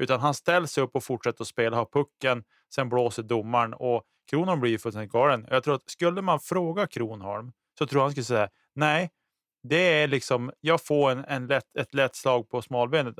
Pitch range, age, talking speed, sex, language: 115-145 Hz, 20-39, 205 wpm, male, Swedish